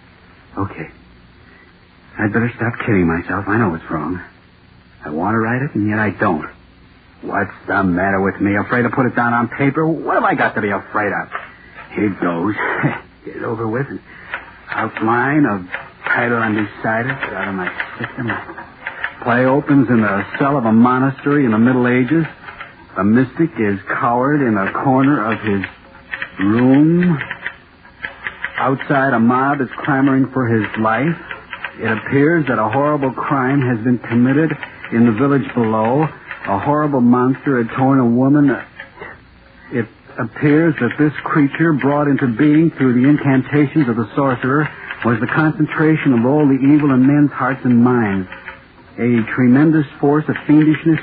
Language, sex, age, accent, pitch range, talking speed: English, male, 60-79, American, 115-145 Hz, 160 wpm